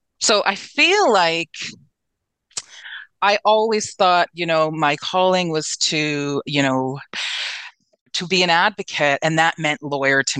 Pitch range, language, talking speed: 150-180 Hz, English, 140 wpm